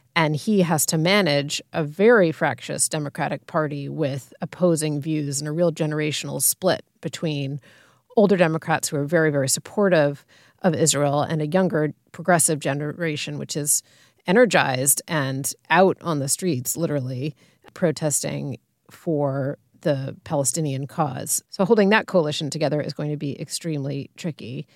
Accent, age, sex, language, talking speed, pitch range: American, 30-49, female, English, 140 wpm, 145-185 Hz